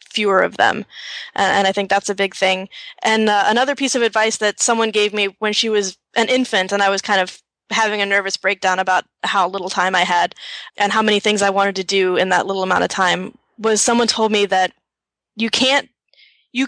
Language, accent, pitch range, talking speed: English, American, 200-235 Hz, 225 wpm